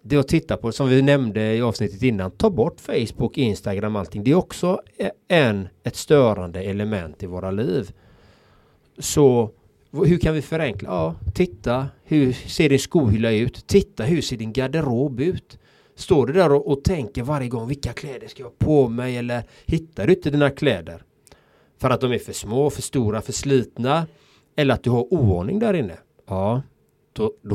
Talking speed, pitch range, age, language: 180 wpm, 105-135 Hz, 30-49, Swedish